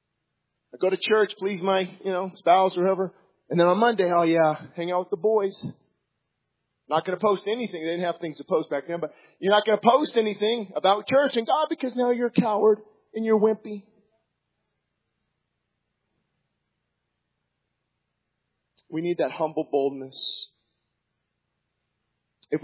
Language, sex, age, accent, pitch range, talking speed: English, male, 40-59, American, 150-195 Hz, 150 wpm